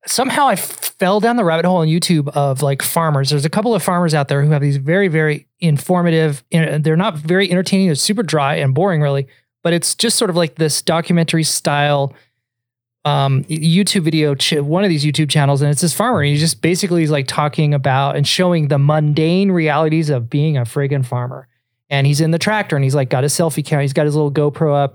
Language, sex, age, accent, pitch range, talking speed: English, male, 30-49, American, 140-170 Hz, 225 wpm